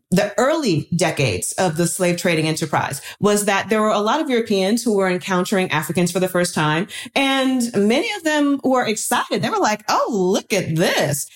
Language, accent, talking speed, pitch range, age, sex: English, American, 195 wpm, 175-240 Hz, 30-49, female